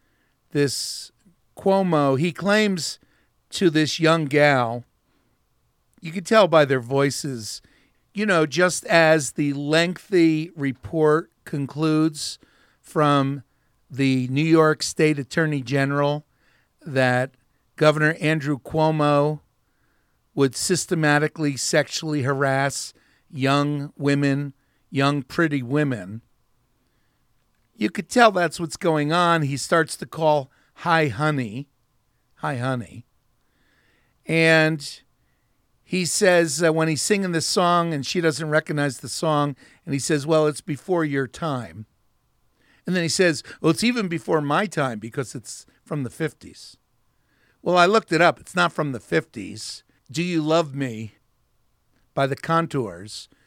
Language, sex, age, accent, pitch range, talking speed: English, male, 50-69, American, 135-165 Hz, 125 wpm